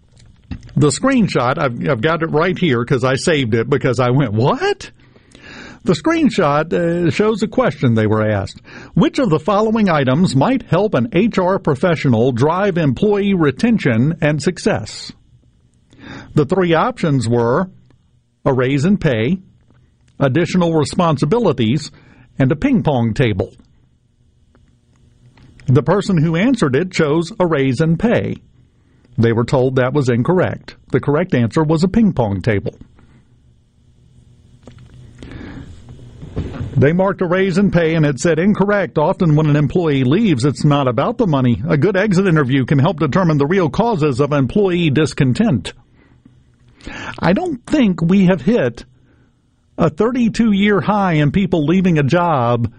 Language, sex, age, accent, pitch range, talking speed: English, male, 50-69, American, 125-185 Hz, 140 wpm